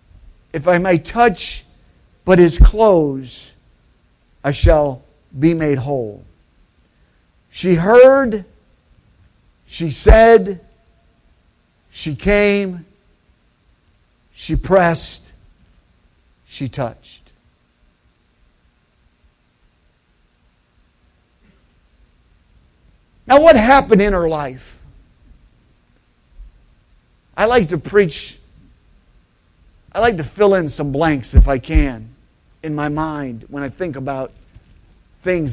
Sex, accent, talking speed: male, American, 85 wpm